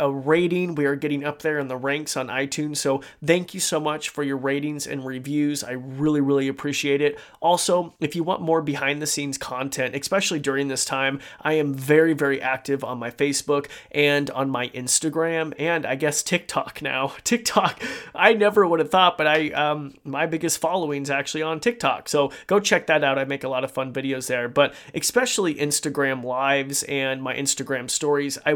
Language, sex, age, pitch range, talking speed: English, male, 30-49, 135-155 Hz, 200 wpm